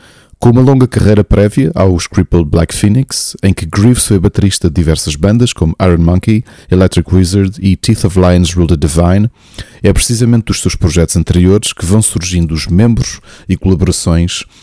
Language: Portuguese